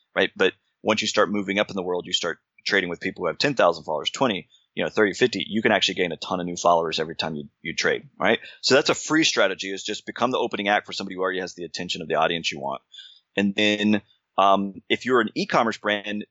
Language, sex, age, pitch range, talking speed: English, male, 30-49, 95-105 Hz, 260 wpm